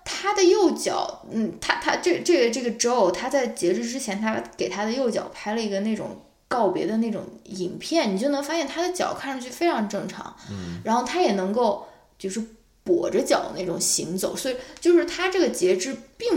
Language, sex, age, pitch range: Chinese, female, 20-39, 190-280 Hz